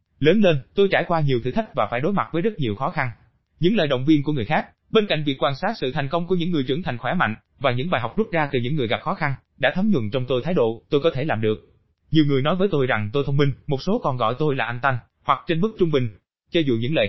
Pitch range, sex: 125-175 Hz, male